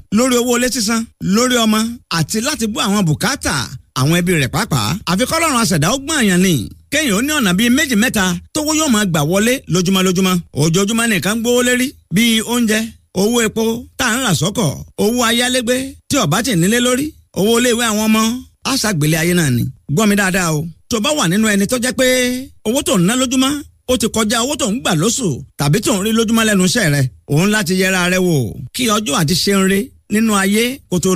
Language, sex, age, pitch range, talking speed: English, male, 50-69, 180-250 Hz, 160 wpm